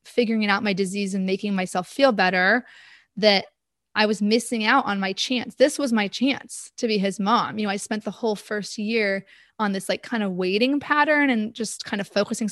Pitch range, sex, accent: 205-245 Hz, female, American